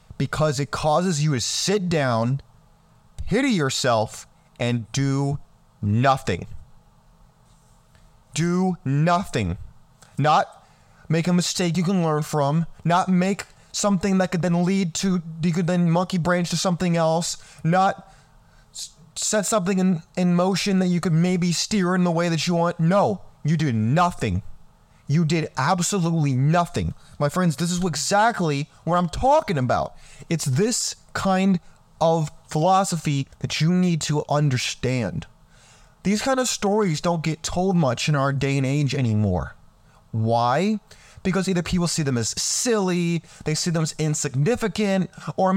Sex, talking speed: male, 145 wpm